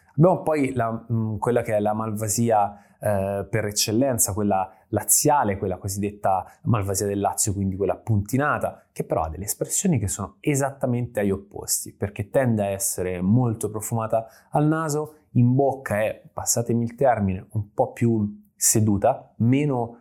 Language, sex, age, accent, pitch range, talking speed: Italian, male, 20-39, native, 100-125 Hz, 150 wpm